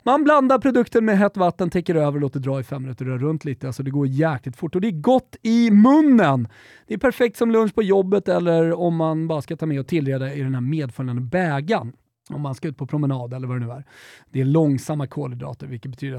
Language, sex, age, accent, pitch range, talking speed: Swedish, male, 30-49, native, 140-210 Hz, 245 wpm